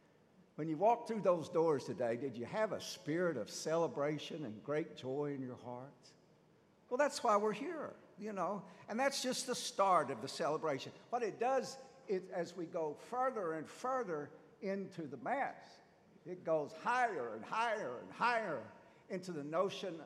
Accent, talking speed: American, 175 wpm